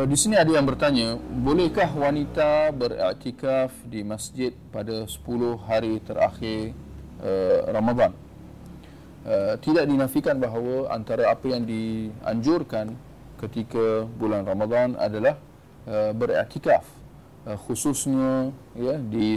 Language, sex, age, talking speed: Malay, male, 40-59, 90 wpm